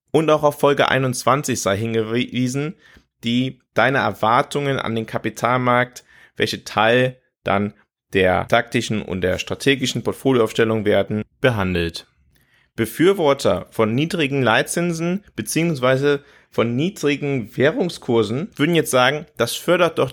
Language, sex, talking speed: German, male, 115 wpm